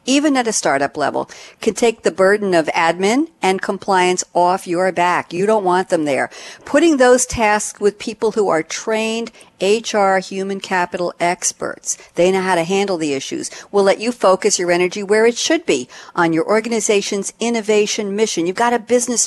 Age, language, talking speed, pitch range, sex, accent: 50-69, English, 185 wpm, 165-225 Hz, female, American